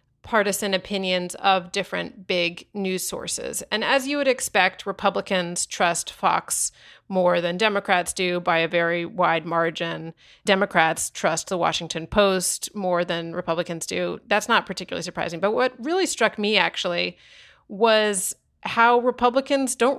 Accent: American